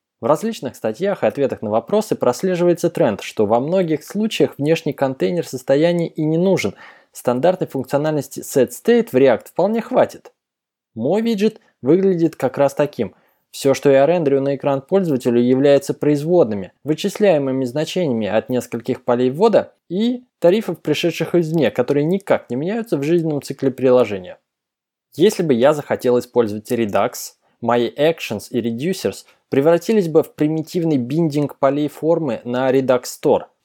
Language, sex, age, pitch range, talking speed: Russian, male, 20-39, 125-170 Hz, 140 wpm